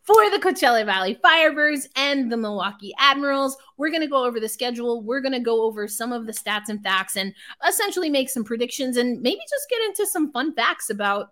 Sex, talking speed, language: female, 220 wpm, English